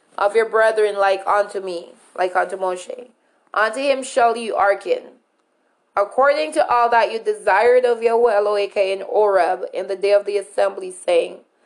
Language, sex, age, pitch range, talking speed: English, female, 20-39, 190-235 Hz, 165 wpm